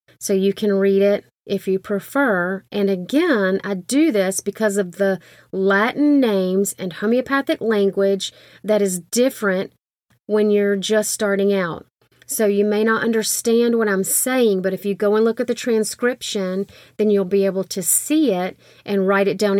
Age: 30-49